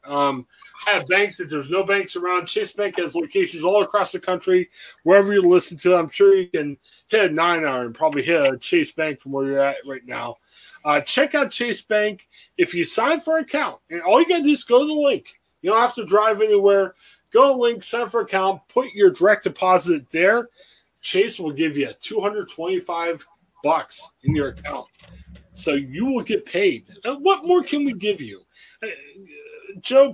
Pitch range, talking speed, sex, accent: 155-230 Hz, 205 wpm, male, American